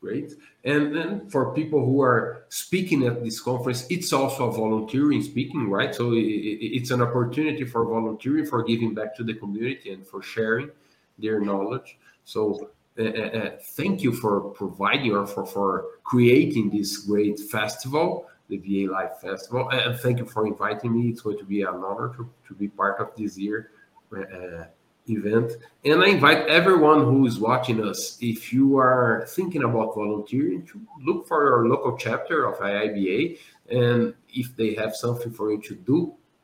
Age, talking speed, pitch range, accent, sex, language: 50-69, 175 wpm, 110-140 Hz, Brazilian, male, English